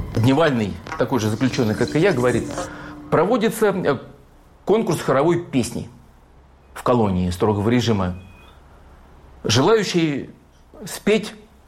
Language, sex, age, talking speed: Russian, male, 50-69, 90 wpm